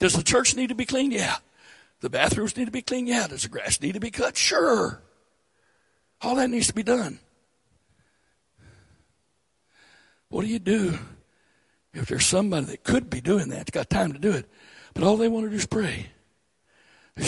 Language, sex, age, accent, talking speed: English, male, 60-79, American, 195 wpm